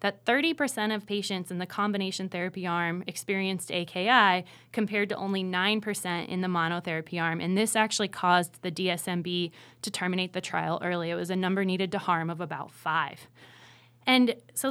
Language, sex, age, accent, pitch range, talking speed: English, female, 20-39, American, 180-210 Hz, 170 wpm